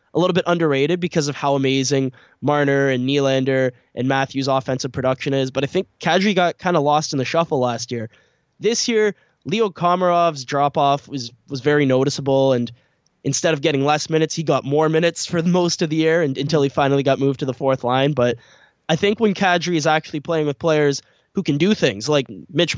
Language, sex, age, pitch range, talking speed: English, male, 10-29, 135-170 Hz, 205 wpm